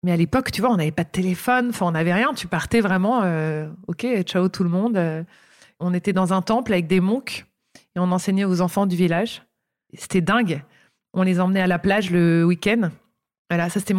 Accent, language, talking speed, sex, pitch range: French, French, 225 wpm, female, 180-225 Hz